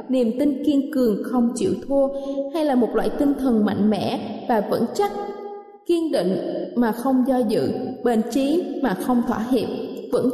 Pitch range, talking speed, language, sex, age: 240-290 Hz, 180 wpm, Vietnamese, female, 20-39